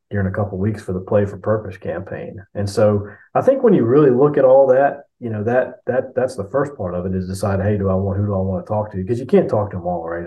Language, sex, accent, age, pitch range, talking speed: English, male, American, 30-49, 90-105 Hz, 315 wpm